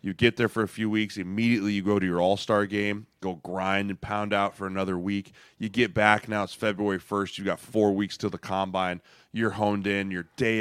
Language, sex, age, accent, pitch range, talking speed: English, male, 20-39, American, 100-135 Hz, 230 wpm